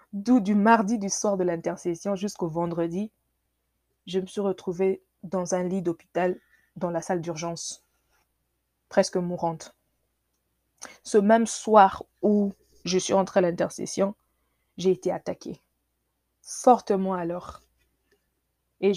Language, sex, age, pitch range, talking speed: English, female, 20-39, 170-210 Hz, 120 wpm